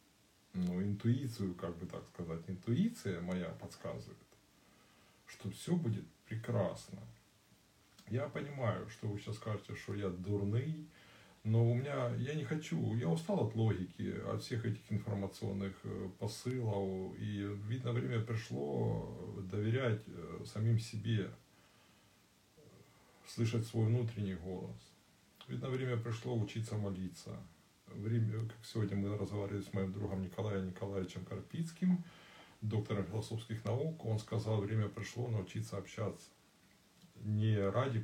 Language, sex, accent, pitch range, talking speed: Russian, male, native, 95-115 Hz, 120 wpm